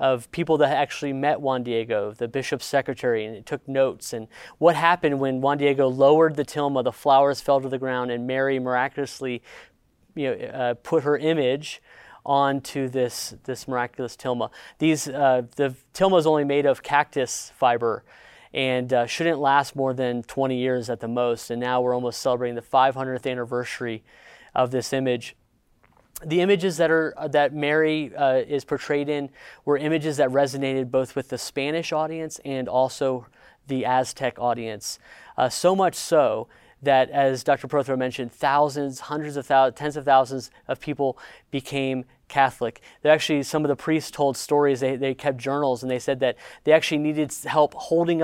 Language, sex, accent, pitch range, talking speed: English, male, American, 130-150 Hz, 175 wpm